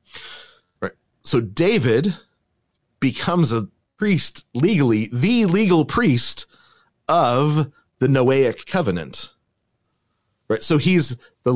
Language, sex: English, male